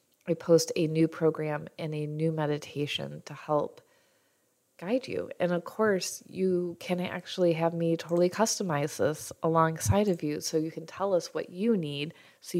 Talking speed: 170 wpm